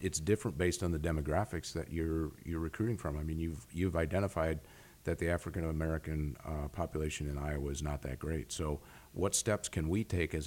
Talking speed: 195 wpm